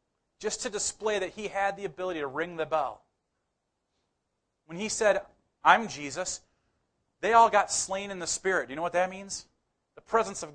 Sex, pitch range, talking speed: male, 160-205 Hz, 190 wpm